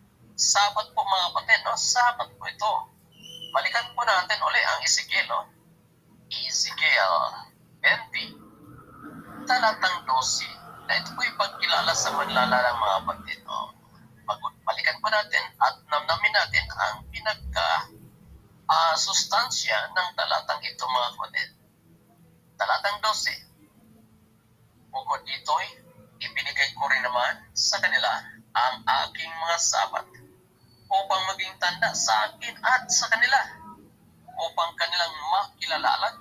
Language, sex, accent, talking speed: English, male, Filipino, 115 wpm